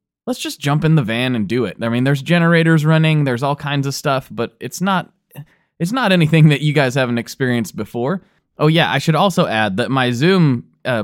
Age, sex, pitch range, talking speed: 20-39, male, 110-155 Hz, 215 wpm